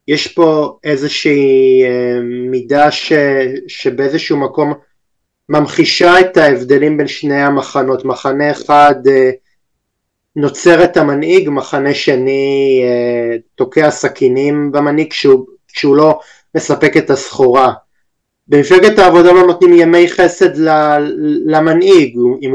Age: 30-49